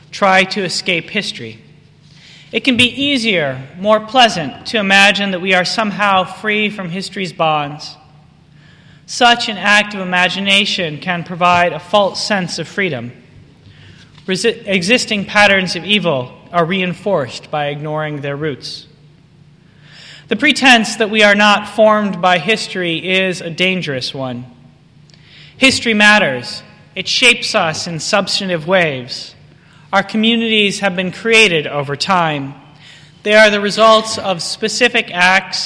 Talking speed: 130 wpm